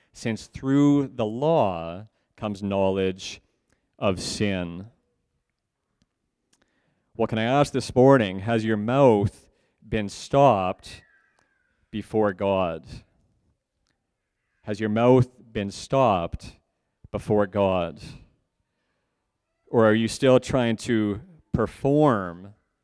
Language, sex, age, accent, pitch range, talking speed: English, male, 40-59, American, 100-115 Hz, 90 wpm